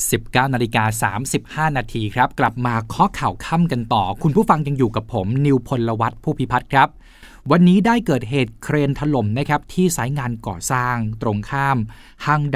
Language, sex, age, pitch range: Thai, male, 20-39, 120-150 Hz